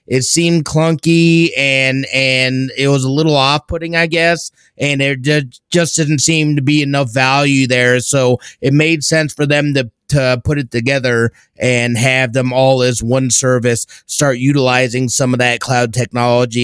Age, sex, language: 30-49, male, English